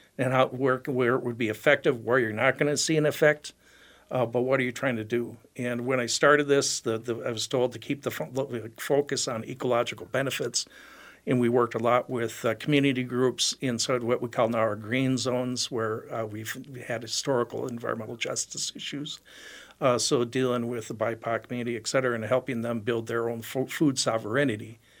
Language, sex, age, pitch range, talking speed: English, male, 60-79, 115-135 Hz, 200 wpm